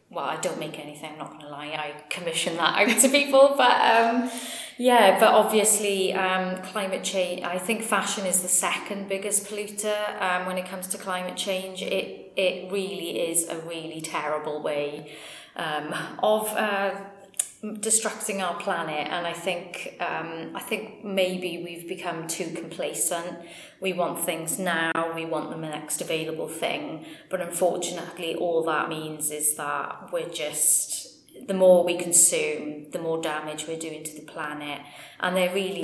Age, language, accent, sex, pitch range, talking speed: 30-49, English, British, female, 160-195 Hz, 160 wpm